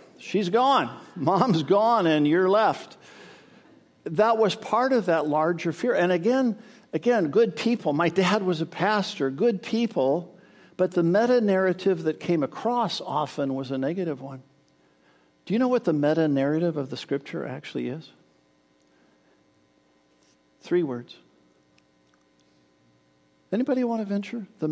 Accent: American